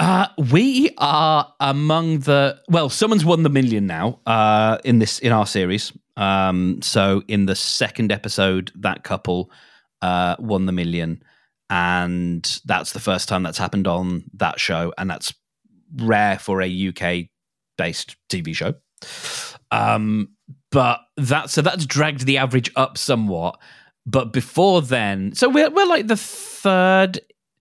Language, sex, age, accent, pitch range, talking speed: English, male, 30-49, British, 95-140 Hz, 150 wpm